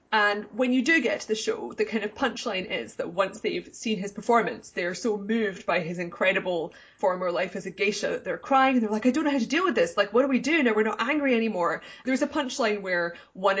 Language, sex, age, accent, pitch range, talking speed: English, female, 20-39, British, 185-230 Hz, 260 wpm